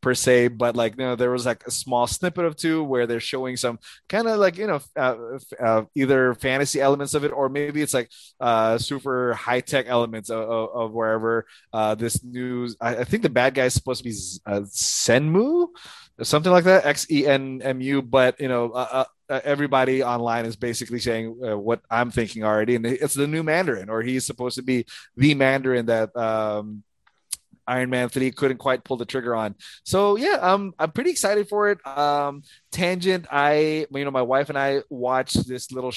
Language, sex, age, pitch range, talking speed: English, male, 20-39, 120-145 Hz, 210 wpm